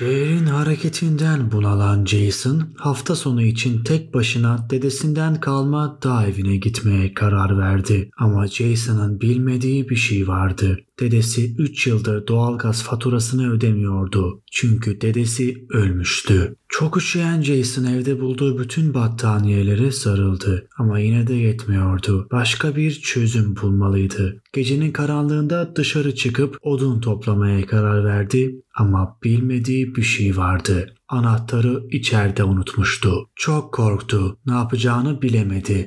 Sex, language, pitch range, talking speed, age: male, Turkish, 105-140 Hz, 115 wpm, 30-49